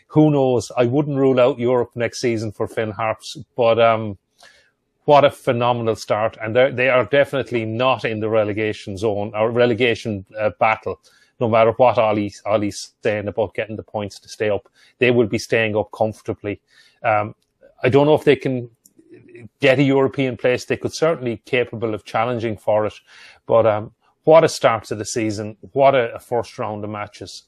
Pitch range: 105-125 Hz